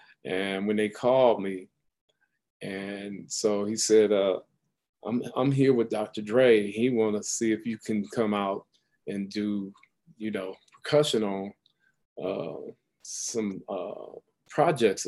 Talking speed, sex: 140 wpm, male